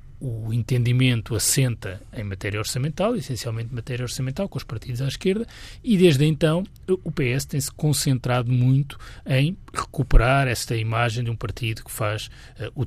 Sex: male